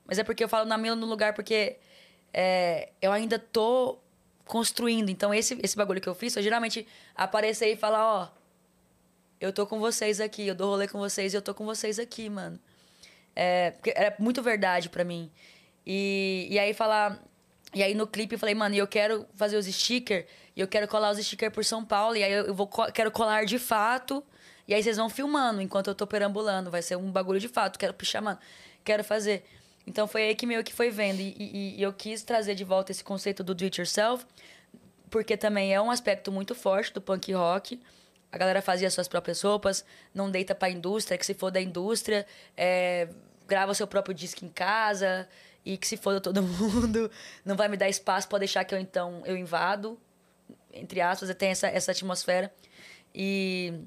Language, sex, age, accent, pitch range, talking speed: Portuguese, female, 10-29, Brazilian, 190-215 Hz, 210 wpm